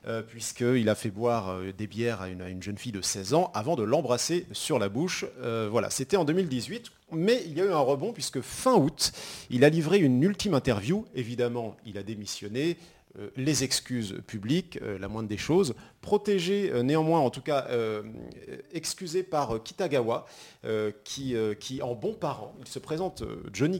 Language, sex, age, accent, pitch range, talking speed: French, male, 40-59, French, 115-165 Hz, 180 wpm